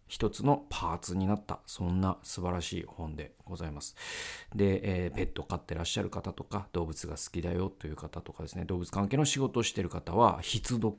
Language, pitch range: Japanese, 90-125 Hz